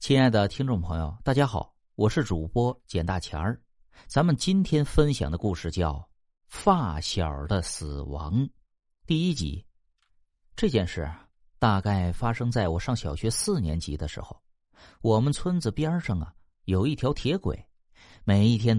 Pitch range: 85-130 Hz